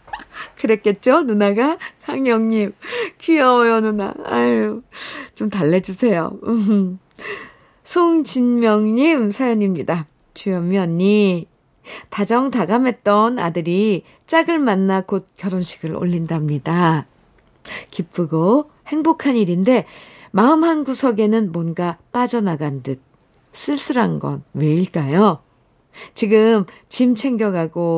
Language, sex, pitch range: Korean, female, 160-220 Hz